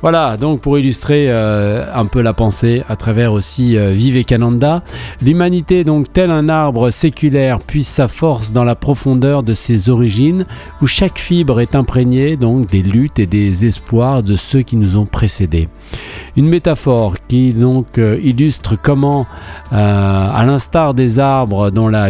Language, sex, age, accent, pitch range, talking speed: French, male, 50-69, French, 105-140 Hz, 160 wpm